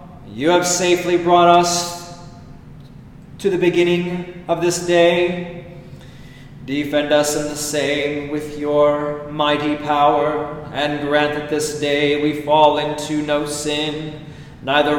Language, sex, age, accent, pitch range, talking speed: English, male, 40-59, American, 150-175 Hz, 125 wpm